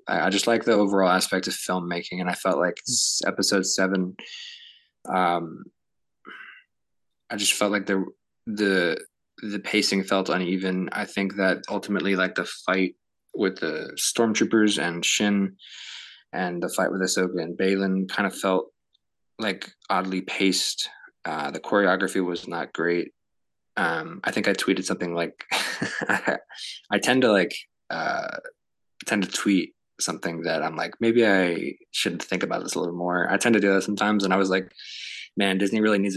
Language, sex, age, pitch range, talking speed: English, male, 20-39, 90-100 Hz, 165 wpm